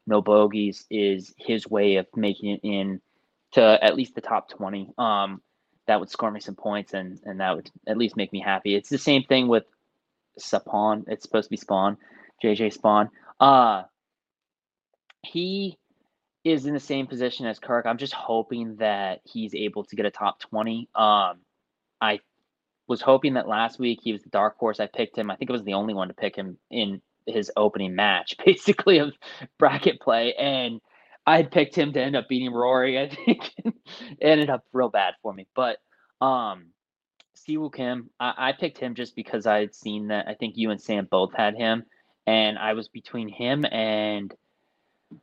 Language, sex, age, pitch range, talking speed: English, male, 20-39, 105-130 Hz, 190 wpm